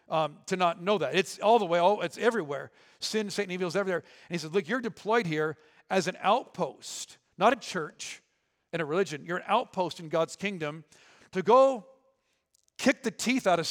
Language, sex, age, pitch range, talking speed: English, male, 50-69, 170-215 Hz, 195 wpm